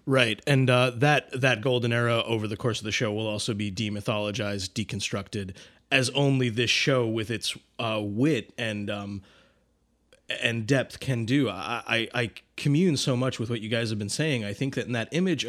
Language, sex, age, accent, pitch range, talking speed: English, male, 30-49, American, 110-135 Hz, 200 wpm